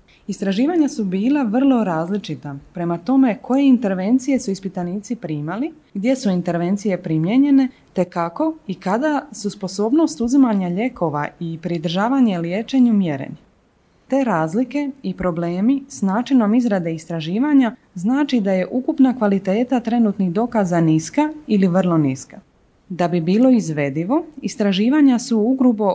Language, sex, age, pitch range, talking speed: Croatian, female, 30-49, 180-260 Hz, 125 wpm